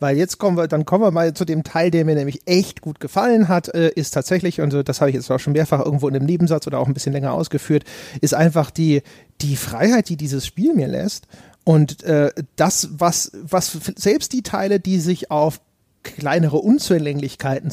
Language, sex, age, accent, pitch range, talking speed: German, male, 30-49, German, 150-185 Hz, 205 wpm